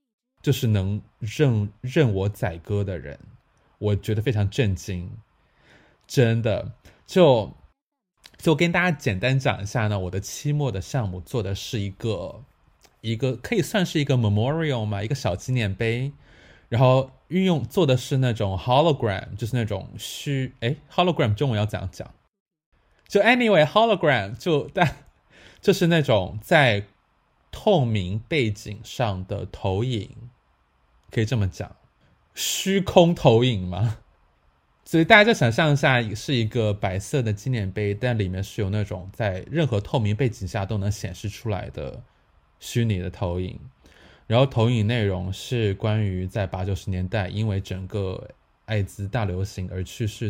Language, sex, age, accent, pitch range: Chinese, male, 20-39, native, 100-130 Hz